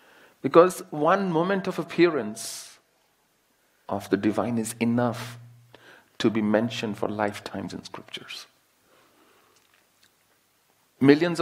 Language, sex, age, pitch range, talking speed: English, male, 40-59, 105-135 Hz, 95 wpm